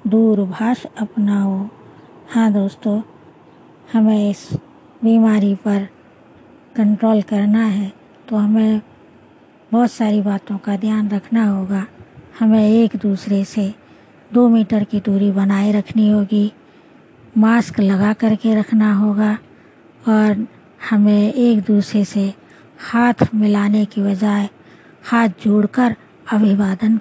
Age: 20-39